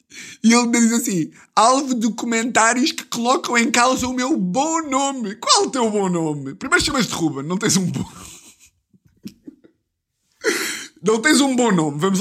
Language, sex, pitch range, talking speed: Portuguese, male, 185-275 Hz, 160 wpm